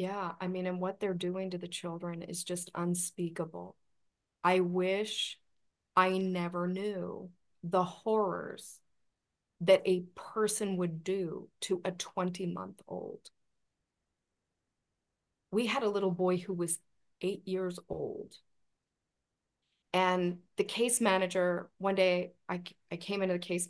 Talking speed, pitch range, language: 125 wpm, 175-200 Hz, English